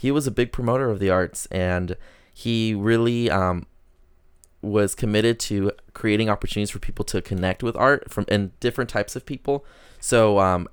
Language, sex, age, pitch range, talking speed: English, male, 20-39, 95-115 Hz, 175 wpm